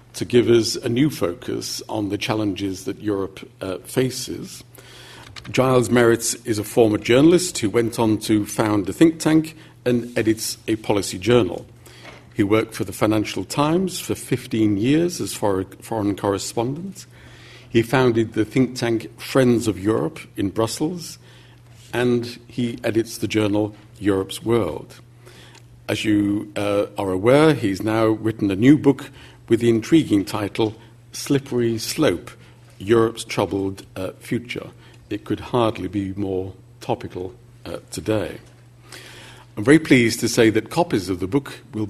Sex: male